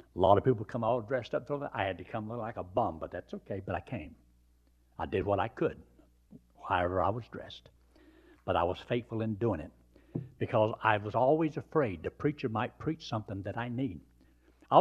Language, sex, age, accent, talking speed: English, male, 60-79, American, 210 wpm